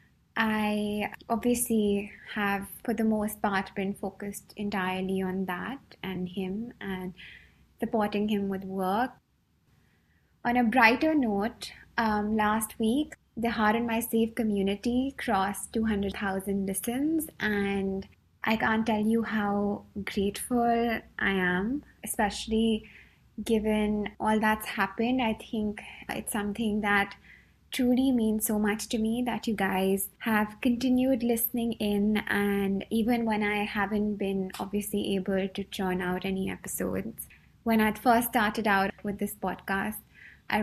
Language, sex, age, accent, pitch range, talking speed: English, female, 20-39, Indian, 195-225 Hz, 130 wpm